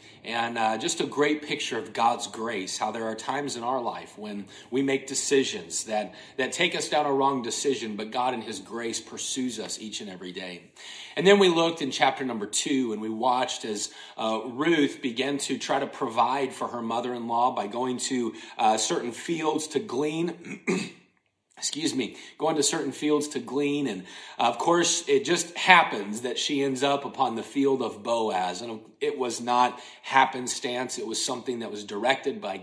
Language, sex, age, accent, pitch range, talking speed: English, male, 40-59, American, 115-150 Hz, 190 wpm